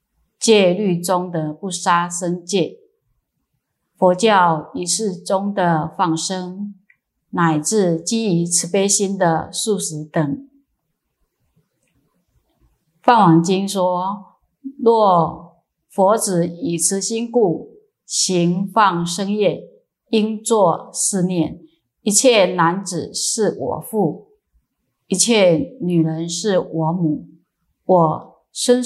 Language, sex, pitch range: Chinese, female, 170-210 Hz